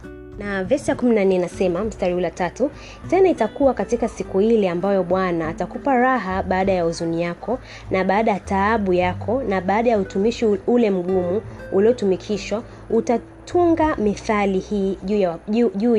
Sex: female